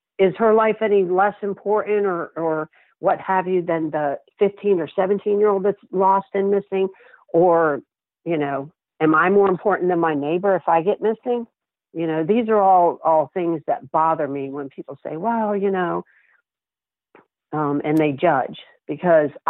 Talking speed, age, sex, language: 170 wpm, 50-69, female, English